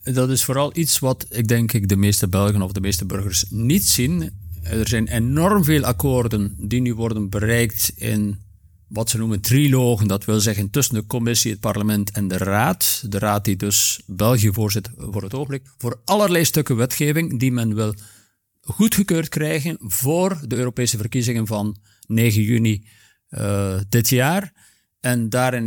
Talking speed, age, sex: 170 wpm, 50-69, male